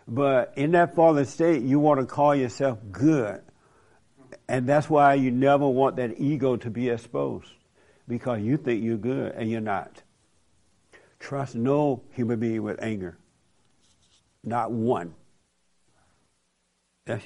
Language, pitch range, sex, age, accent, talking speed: English, 115-140 Hz, male, 60-79, American, 135 wpm